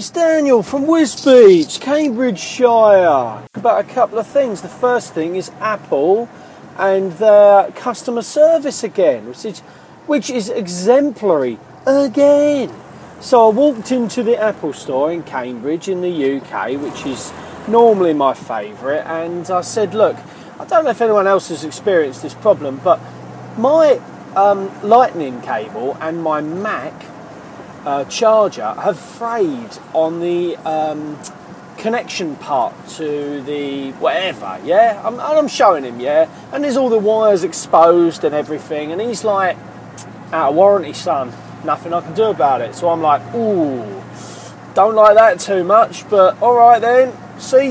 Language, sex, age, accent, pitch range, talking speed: English, male, 40-59, British, 175-245 Hz, 150 wpm